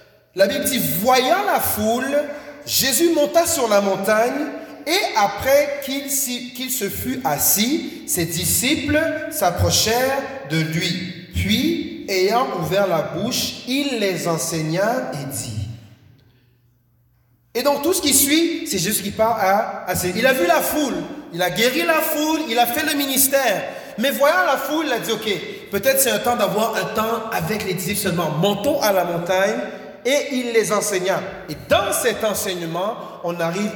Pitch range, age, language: 180-265 Hz, 30-49, French